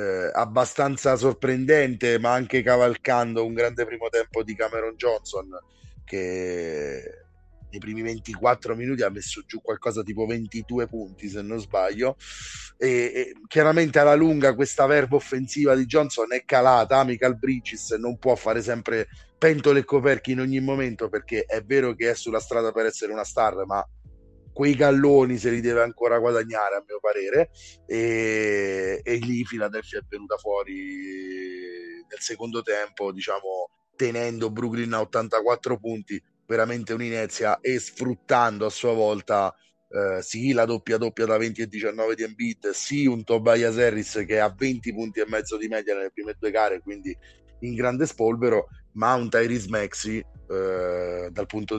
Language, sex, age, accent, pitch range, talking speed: Italian, male, 30-49, native, 110-130 Hz, 155 wpm